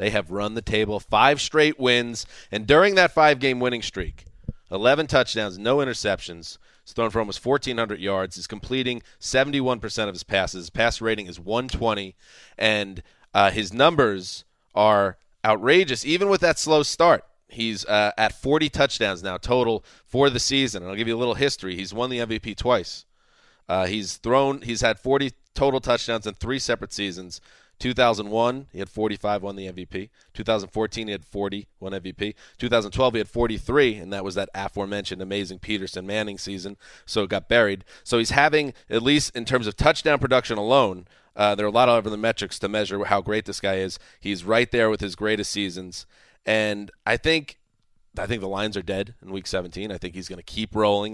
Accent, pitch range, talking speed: American, 100-125 Hz, 190 wpm